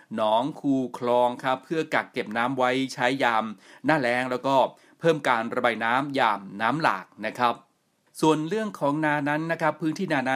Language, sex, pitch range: Thai, male, 120-145 Hz